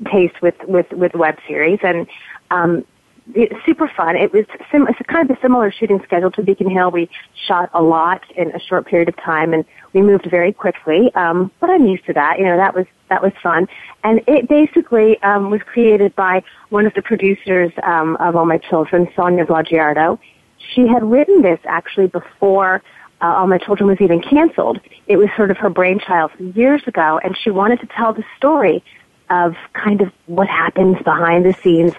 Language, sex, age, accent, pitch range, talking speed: English, female, 30-49, American, 170-210 Hz, 200 wpm